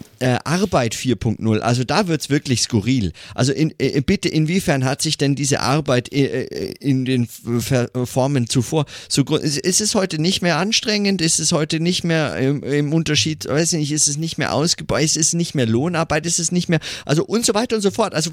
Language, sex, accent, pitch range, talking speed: German, male, German, 125-160 Hz, 205 wpm